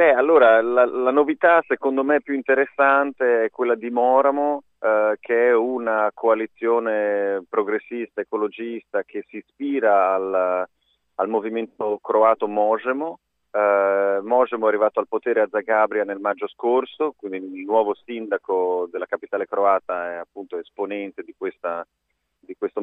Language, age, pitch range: Italian, 30-49, 100-140 Hz